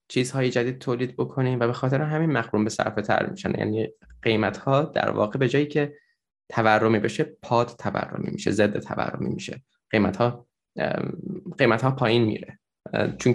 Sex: male